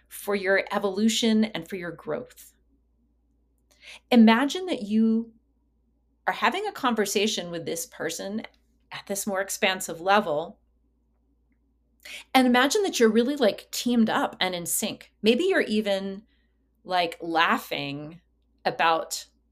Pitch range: 170-235 Hz